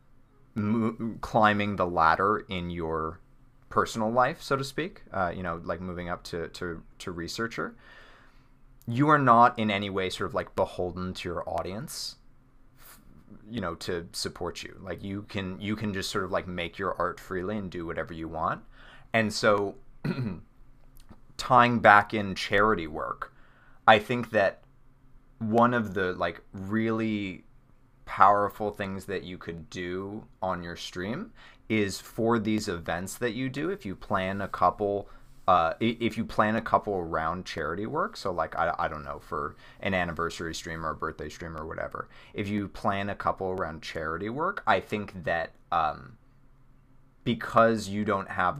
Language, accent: English, American